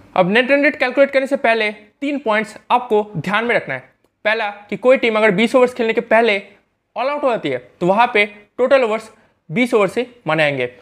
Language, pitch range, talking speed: Hindi, 190-255 Hz, 210 wpm